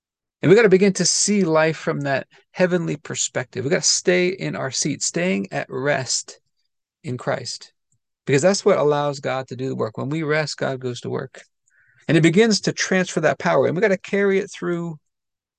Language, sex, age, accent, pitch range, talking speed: English, male, 40-59, American, 130-170 Hz, 210 wpm